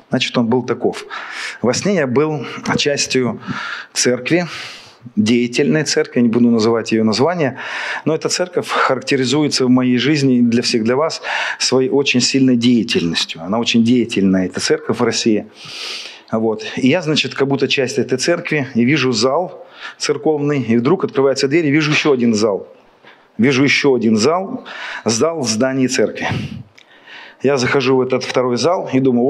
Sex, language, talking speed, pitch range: male, Russian, 160 wpm, 120-145 Hz